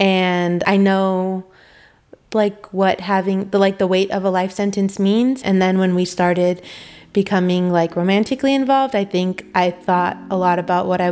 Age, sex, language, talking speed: 20-39, female, English, 180 wpm